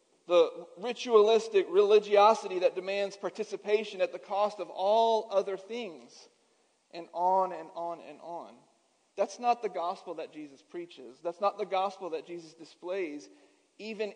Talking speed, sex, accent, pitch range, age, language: 145 wpm, male, American, 180-225 Hz, 40-59, English